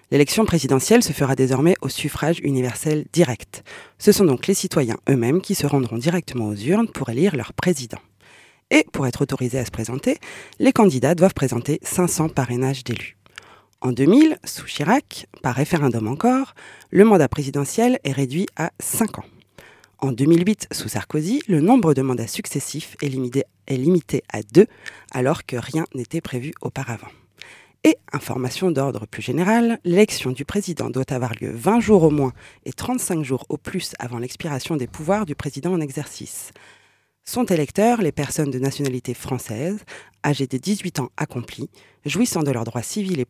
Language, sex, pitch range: French, female, 130-175 Hz